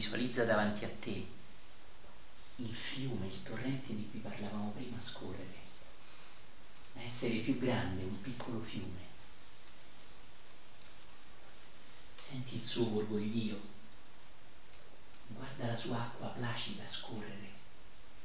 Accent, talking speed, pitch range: native, 100 wpm, 70-115 Hz